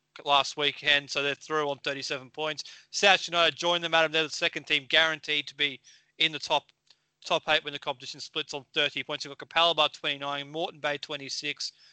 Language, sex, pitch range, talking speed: English, male, 140-160 Hz, 195 wpm